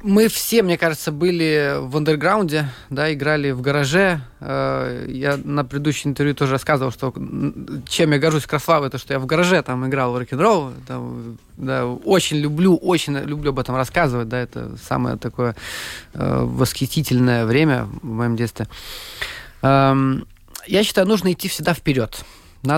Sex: male